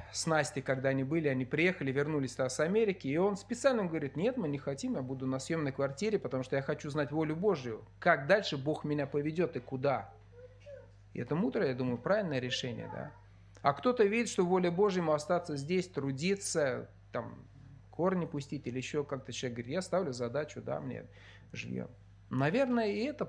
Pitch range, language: 110-170 Hz, Russian